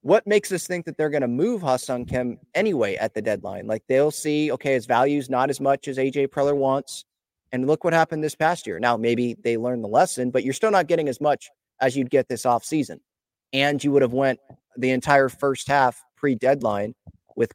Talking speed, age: 220 wpm, 30-49